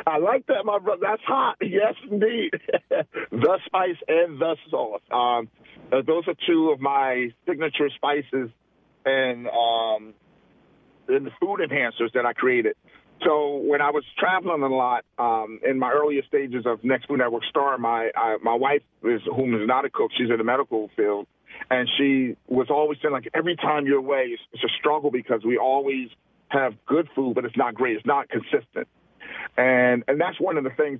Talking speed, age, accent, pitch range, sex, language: 190 wpm, 40-59, American, 125-170 Hz, male, English